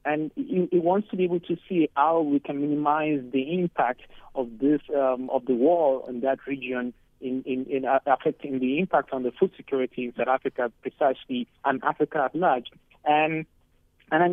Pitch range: 130-175 Hz